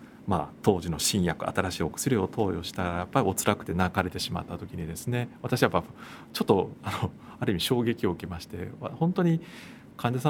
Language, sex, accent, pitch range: Japanese, male, native, 95-140 Hz